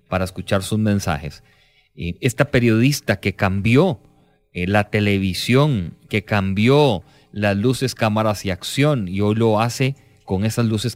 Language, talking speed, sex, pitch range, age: English, 130 wpm, male, 100-130 Hz, 30-49